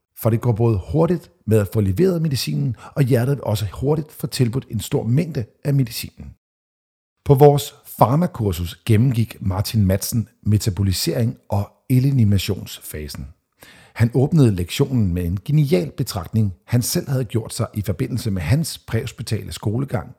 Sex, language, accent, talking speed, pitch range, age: male, Danish, native, 145 wpm, 100-135 Hz, 50-69